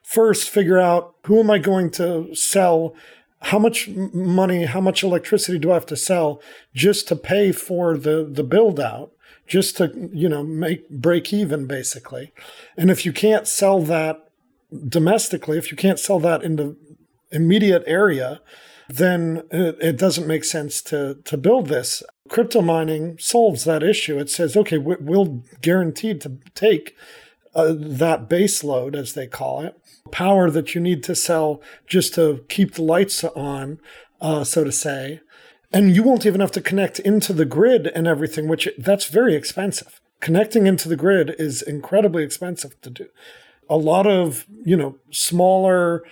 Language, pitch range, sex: English, 155-195 Hz, male